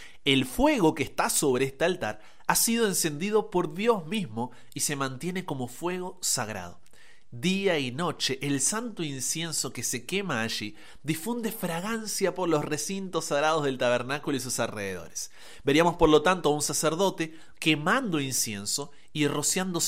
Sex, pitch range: male, 130-185 Hz